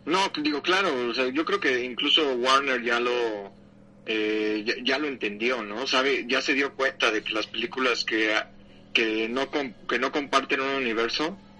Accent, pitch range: Mexican, 115-145 Hz